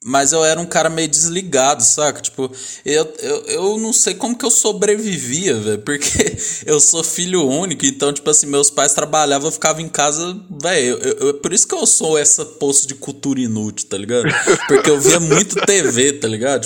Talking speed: 200 wpm